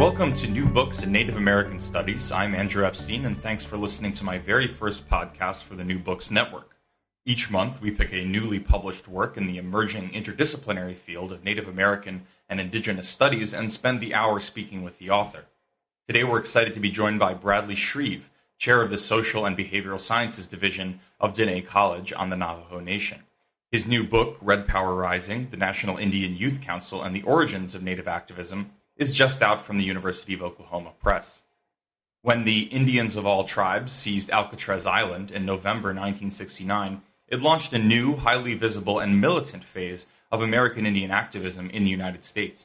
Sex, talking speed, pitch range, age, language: male, 185 wpm, 95-110 Hz, 30-49, English